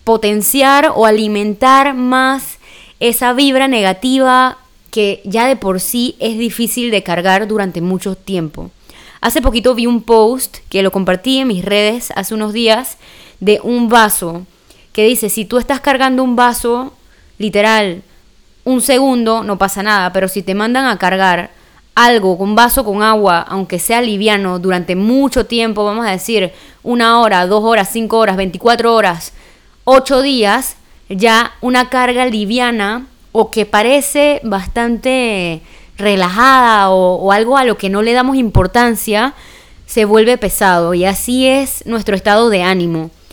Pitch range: 195-255 Hz